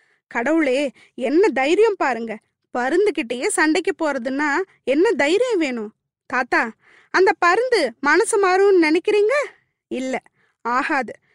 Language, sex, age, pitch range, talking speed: Tamil, female, 20-39, 270-385 Hz, 95 wpm